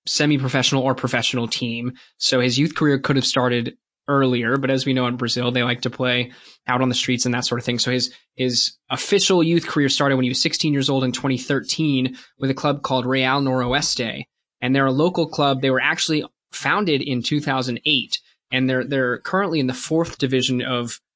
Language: English